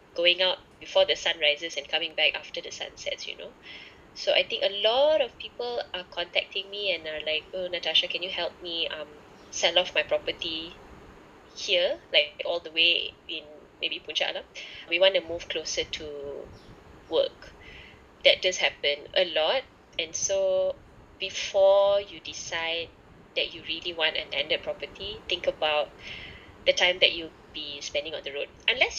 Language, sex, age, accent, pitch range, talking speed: English, female, 20-39, Malaysian, 160-225 Hz, 175 wpm